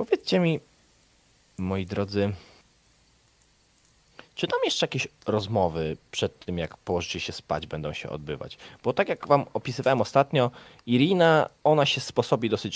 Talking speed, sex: 135 wpm, male